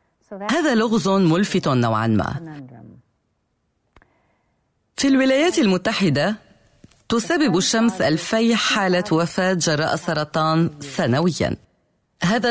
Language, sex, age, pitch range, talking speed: Arabic, female, 30-49, 150-210 Hz, 80 wpm